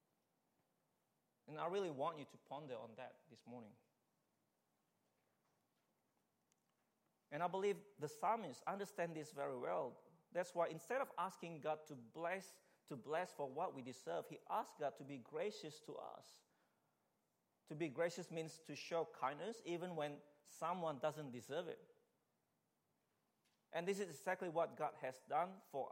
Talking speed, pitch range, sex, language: 150 wpm, 145-185 Hz, male, English